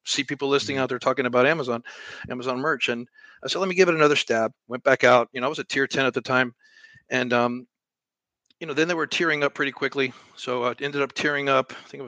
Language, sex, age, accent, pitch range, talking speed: English, male, 40-59, American, 125-150 Hz, 260 wpm